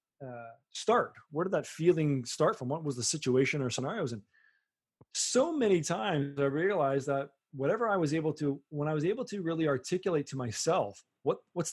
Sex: male